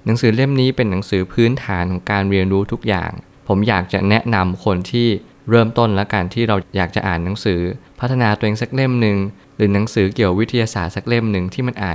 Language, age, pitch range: Thai, 20-39, 95-115 Hz